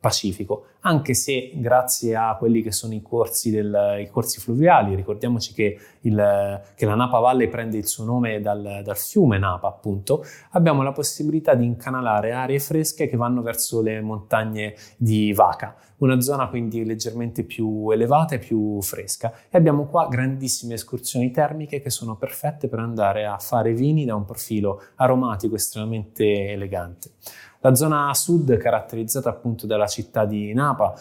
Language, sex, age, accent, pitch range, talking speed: Italian, male, 20-39, native, 110-130 Hz, 160 wpm